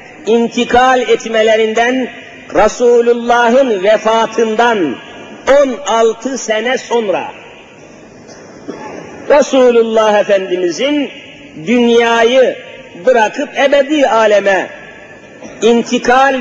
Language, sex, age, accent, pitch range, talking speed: Turkish, male, 50-69, native, 230-275 Hz, 50 wpm